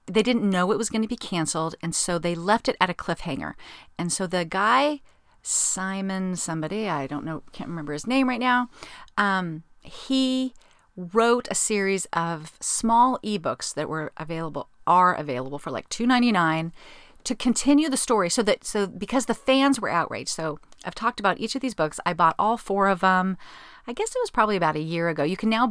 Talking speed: 200 wpm